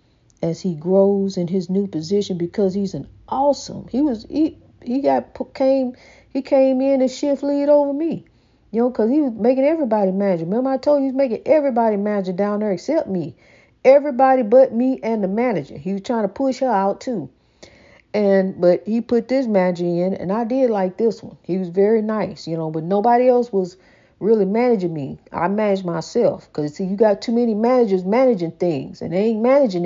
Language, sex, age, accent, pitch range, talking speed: English, female, 50-69, American, 185-250 Hz, 205 wpm